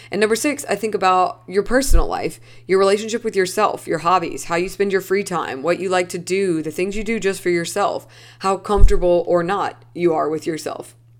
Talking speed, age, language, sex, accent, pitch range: 220 wpm, 20-39, English, female, American, 165-200 Hz